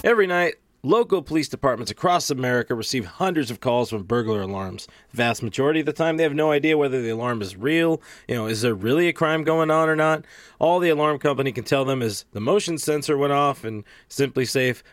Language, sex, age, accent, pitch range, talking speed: English, male, 30-49, American, 120-155 Hz, 225 wpm